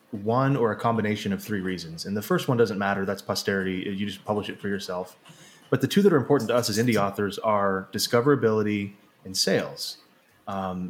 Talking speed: 205 wpm